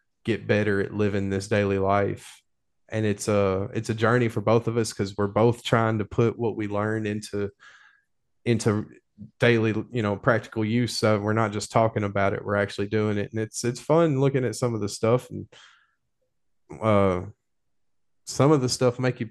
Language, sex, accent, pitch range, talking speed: English, male, American, 105-120 Hz, 195 wpm